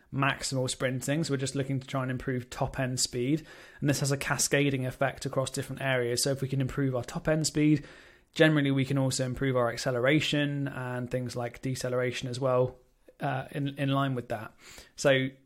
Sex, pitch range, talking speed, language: male, 130-140 Hz, 200 wpm, English